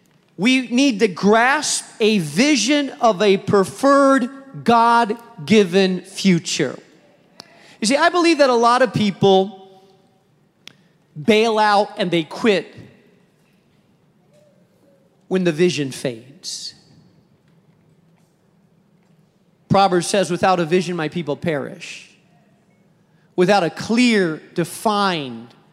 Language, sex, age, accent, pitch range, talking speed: English, male, 40-59, American, 170-225 Hz, 95 wpm